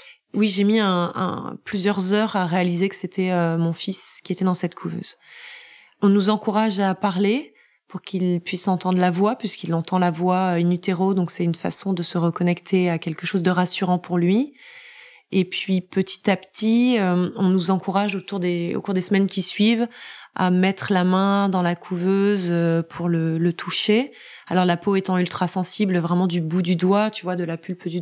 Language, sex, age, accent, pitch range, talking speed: French, female, 20-39, French, 175-205 Hz, 200 wpm